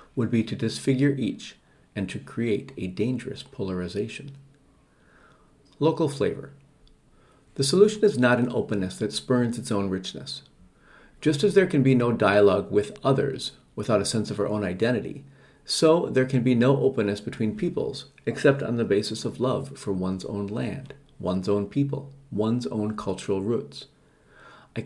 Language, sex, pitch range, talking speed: English, male, 105-140 Hz, 160 wpm